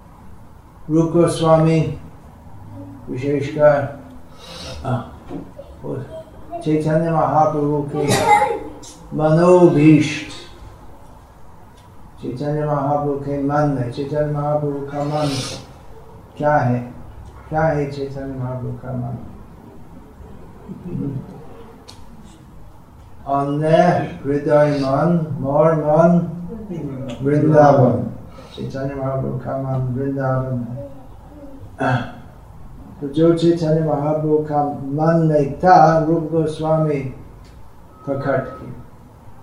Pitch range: 130-155 Hz